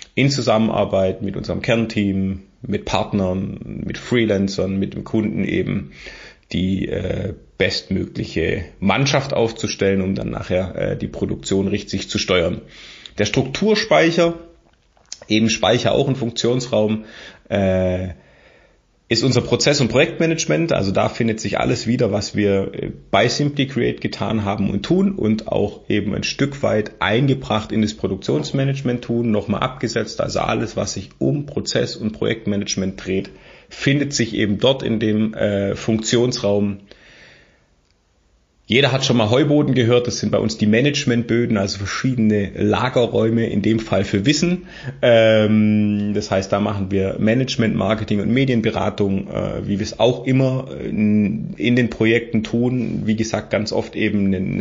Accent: German